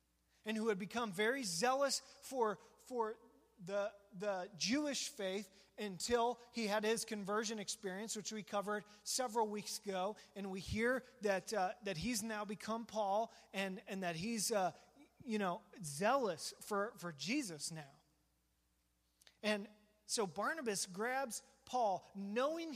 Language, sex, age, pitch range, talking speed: English, male, 30-49, 170-225 Hz, 135 wpm